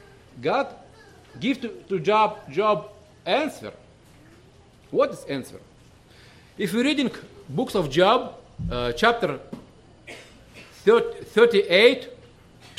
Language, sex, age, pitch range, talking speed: English, male, 50-69, 160-245 Hz, 100 wpm